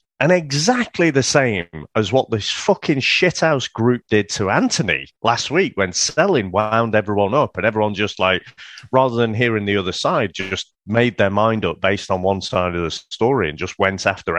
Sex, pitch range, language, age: male, 100-155 Hz, English, 30-49